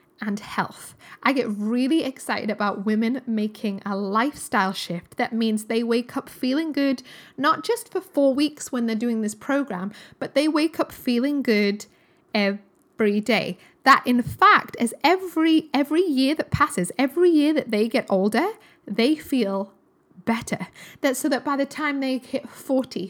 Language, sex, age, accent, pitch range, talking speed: English, female, 10-29, British, 215-280 Hz, 165 wpm